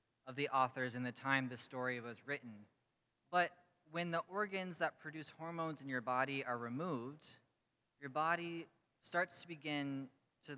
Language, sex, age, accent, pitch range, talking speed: English, male, 30-49, American, 130-180 Hz, 160 wpm